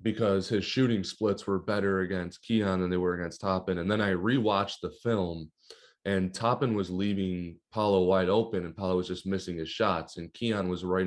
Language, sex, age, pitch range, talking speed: English, male, 20-39, 90-105 Hz, 200 wpm